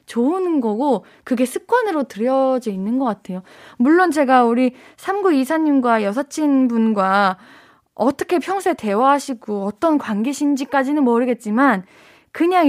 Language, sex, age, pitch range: Korean, female, 20-39, 230-330 Hz